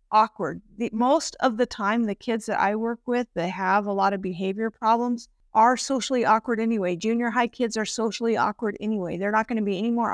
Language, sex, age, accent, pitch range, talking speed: English, female, 50-69, American, 195-230 Hz, 215 wpm